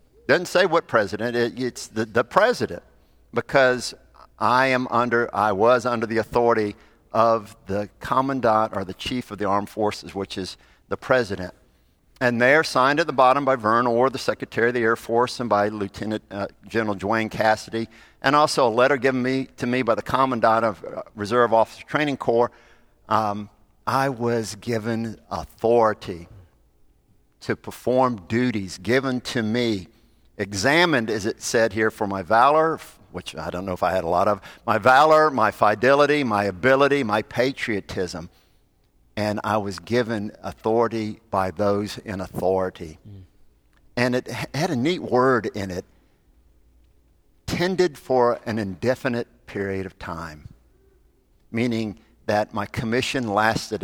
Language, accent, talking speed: English, American, 155 wpm